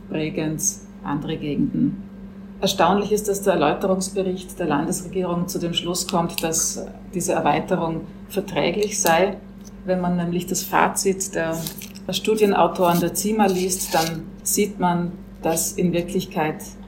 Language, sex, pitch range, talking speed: German, female, 170-195 Hz, 125 wpm